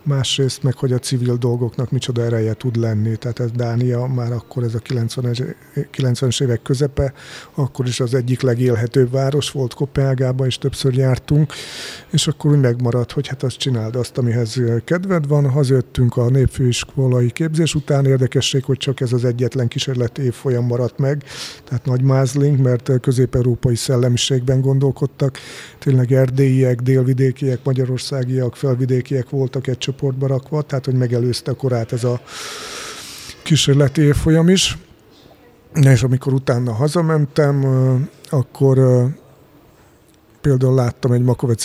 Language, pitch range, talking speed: Hungarian, 120-135 Hz, 130 wpm